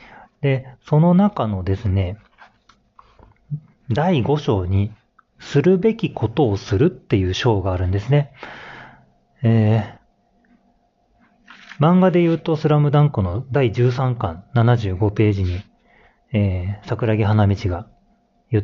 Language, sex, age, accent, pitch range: Japanese, male, 40-59, native, 105-145 Hz